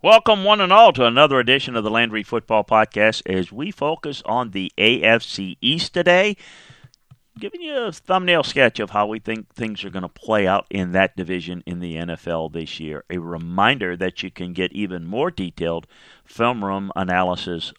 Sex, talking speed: male, 185 wpm